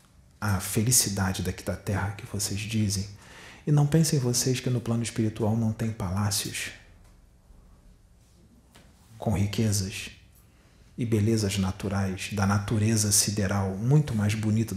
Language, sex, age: Portuguese, male, 40-59